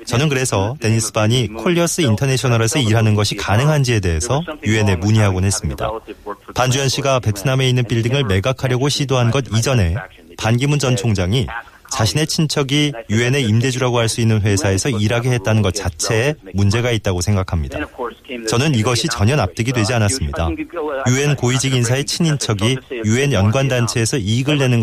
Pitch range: 105-135 Hz